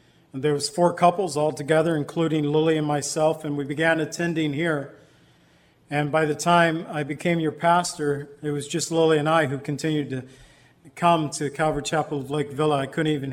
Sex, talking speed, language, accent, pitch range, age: male, 190 wpm, English, American, 145-170 Hz, 50-69